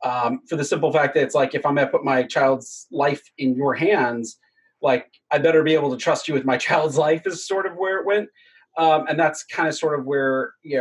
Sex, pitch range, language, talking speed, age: male, 140-185 Hz, English, 255 wpm, 30-49